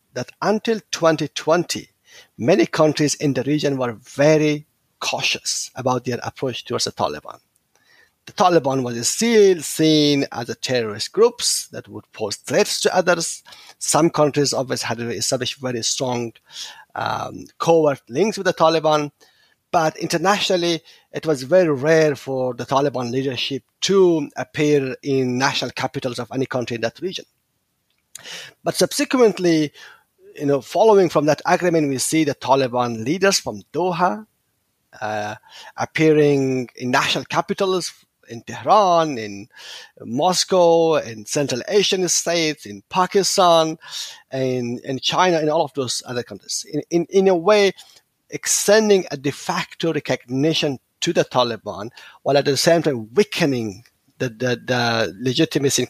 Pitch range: 125-170 Hz